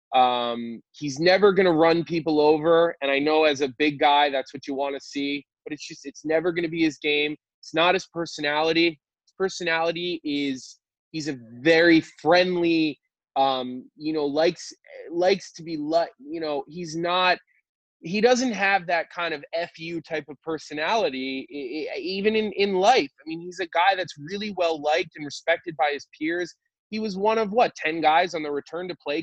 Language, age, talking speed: English, 20-39, 195 wpm